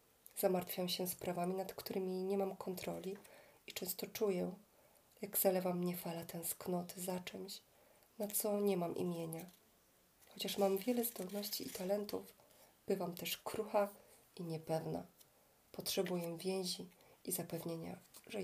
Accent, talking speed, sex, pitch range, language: native, 125 wpm, female, 175-205 Hz, Polish